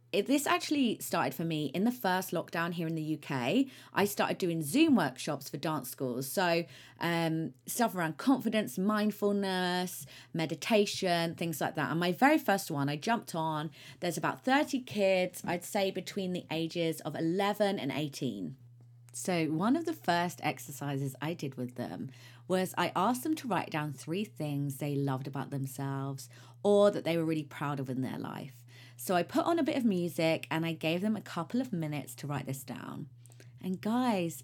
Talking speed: 185 wpm